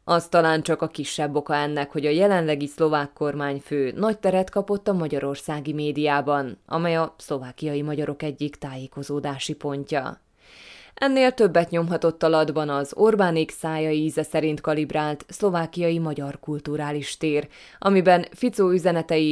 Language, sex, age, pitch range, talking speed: Hungarian, female, 20-39, 145-175 Hz, 125 wpm